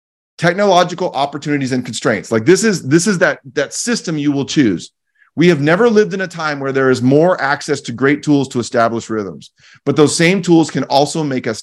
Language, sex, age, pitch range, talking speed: English, male, 30-49, 125-175 Hz, 210 wpm